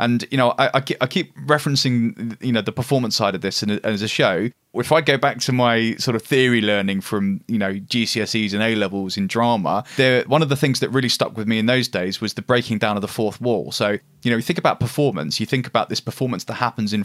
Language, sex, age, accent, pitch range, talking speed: English, male, 20-39, British, 105-130 Hz, 255 wpm